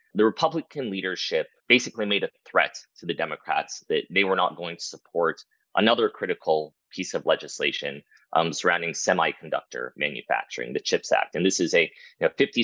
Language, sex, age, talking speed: English, male, 30-49, 160 wpm